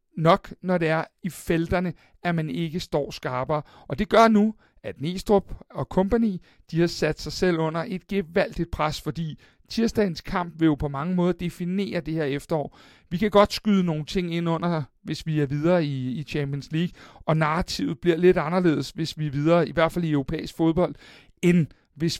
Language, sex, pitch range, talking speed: Danish, male, 140-175 Hz, 195 wpm